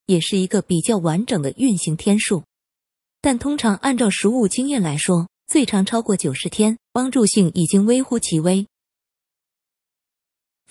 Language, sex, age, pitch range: Chinese, female, 20-39, 175-235 Hz